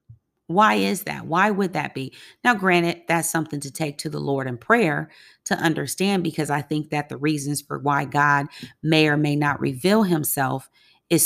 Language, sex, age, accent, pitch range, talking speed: English, female, 40-59, American, 145-185 Hz, 190 wpm